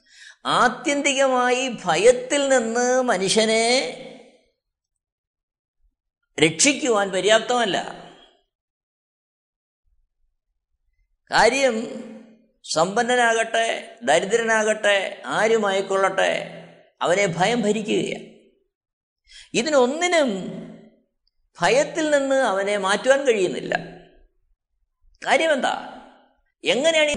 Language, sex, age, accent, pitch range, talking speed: Malayalam, male, 50-69, native, 190-250 Hz, 45 wpm